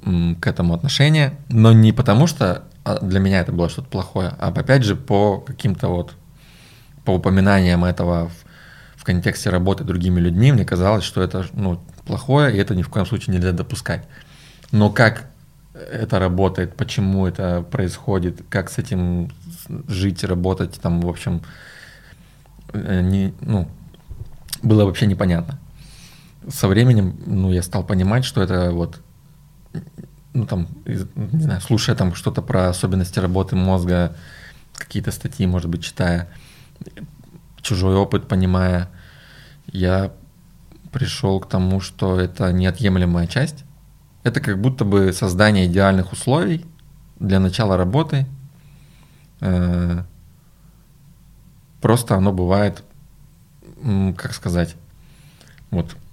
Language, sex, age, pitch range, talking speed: Russian, male, 20-39, 90-140 Hz, 120 wpm